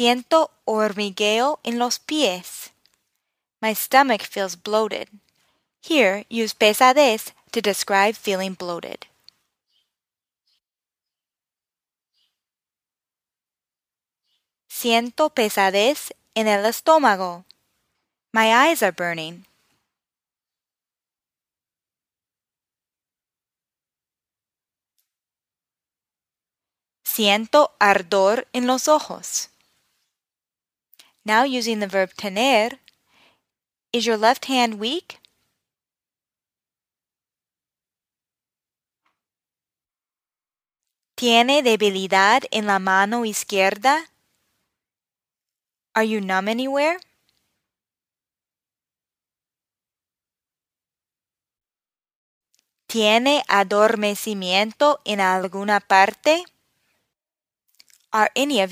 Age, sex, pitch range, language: 20-39, female, 200-255 Hz, Spanish